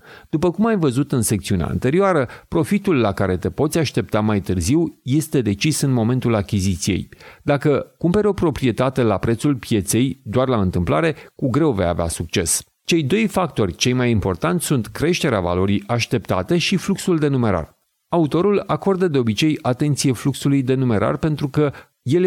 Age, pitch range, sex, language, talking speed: 40-59, 110-160 Hz, male, Hungarian, 160 wpm